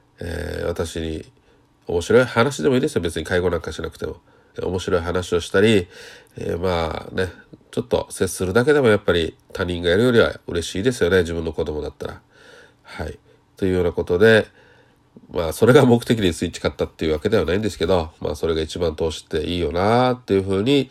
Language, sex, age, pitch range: Japanese, male, 40-59, 85-105 Hz